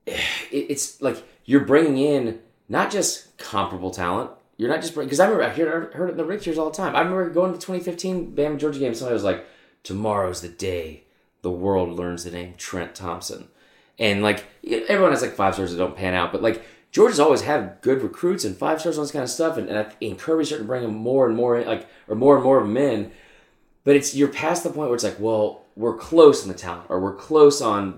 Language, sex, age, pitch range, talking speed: English, male, 20-39, 100-145 Hz, 240 wpm